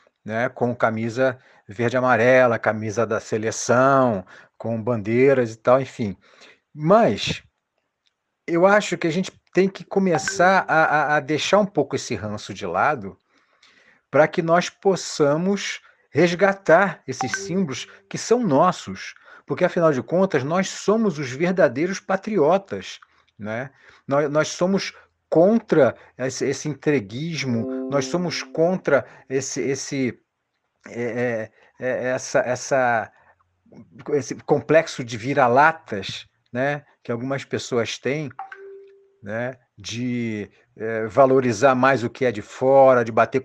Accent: Brazilian